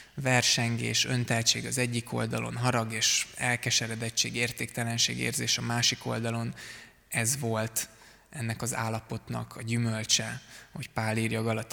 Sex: male